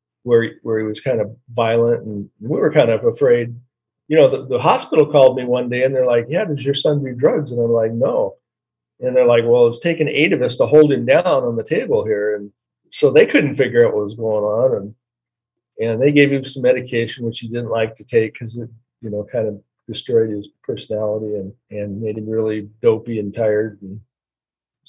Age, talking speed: 50-69, 225 wpm